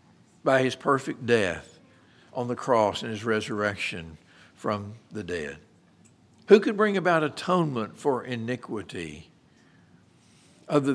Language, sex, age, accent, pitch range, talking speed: English, male, 60-79, American, 115-145 Hz, 115 wpm